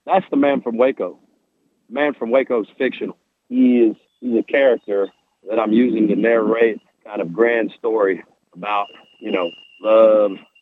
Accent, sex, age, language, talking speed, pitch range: American, male, 40-59, English, 160 wpm, 110-130 Hz